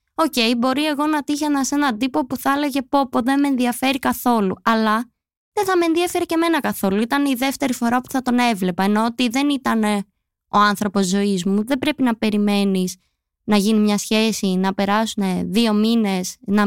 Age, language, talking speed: 20-39, Greek, 195 wpm